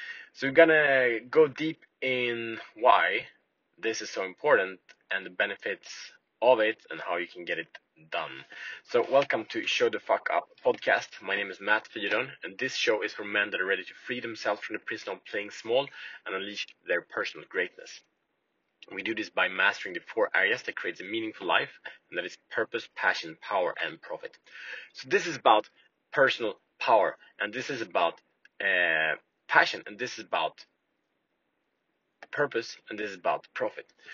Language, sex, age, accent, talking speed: Swedish, male, 30-49, Norwegian, 180 wpm